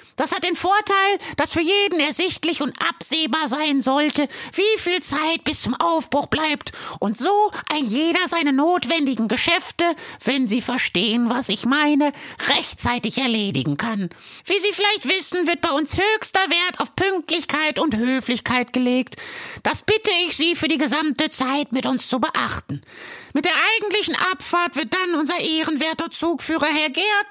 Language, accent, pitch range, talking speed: German, German, 260-345 Hz, 160 wpm